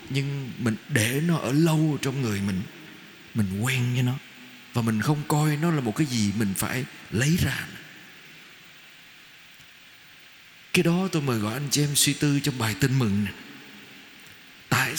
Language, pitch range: Vietnamese, 115-170 Hz